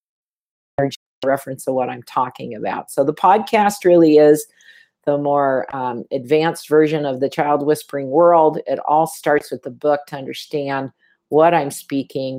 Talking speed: 155 wpm